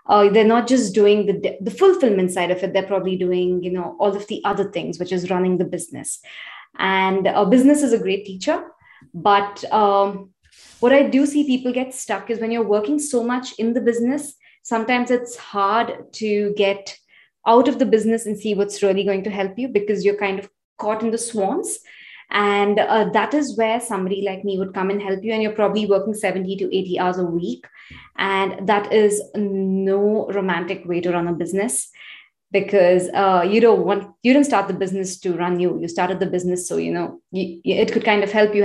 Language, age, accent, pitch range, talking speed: English, 20-39, Indian, 195-230 Hz, 210 wpm